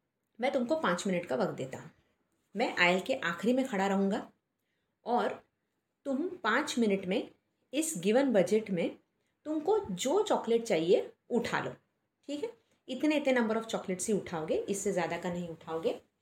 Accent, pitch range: native, 190-265 Hz